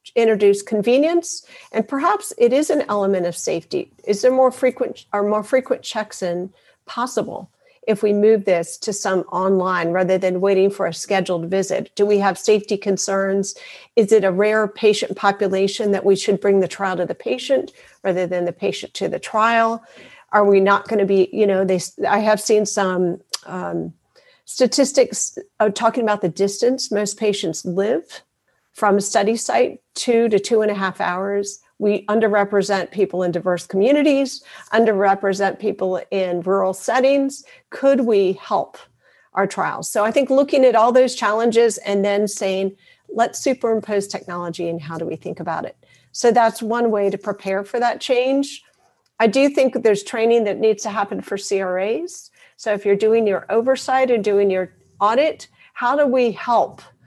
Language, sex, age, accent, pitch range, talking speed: English, female, 50-69, American, 195-235 Hz, 175 wpm